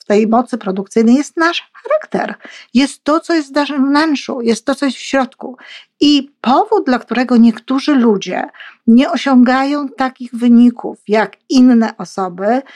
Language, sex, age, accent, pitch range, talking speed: Polish, female, 50-69, native, 215-275 Hz, 150 wpm